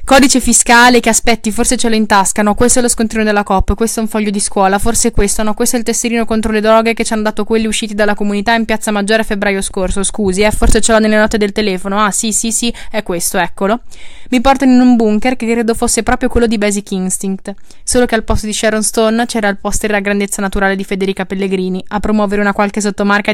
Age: 20-39